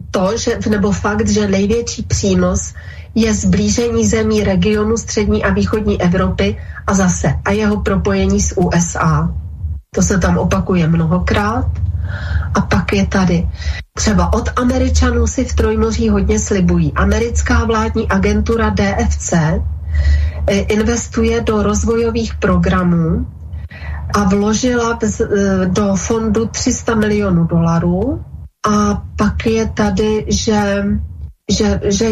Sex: female